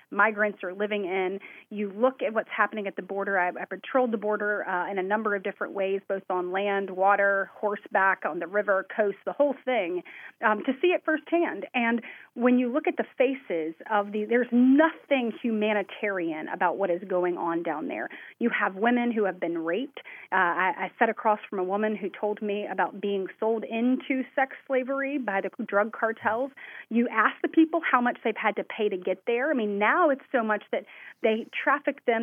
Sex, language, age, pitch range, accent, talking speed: female, English, 30-49, 205-270 Hz, American, 210 wpm